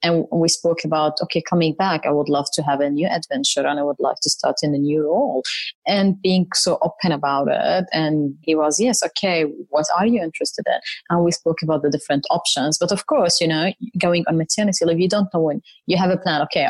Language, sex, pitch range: English, female, 150-180 Hz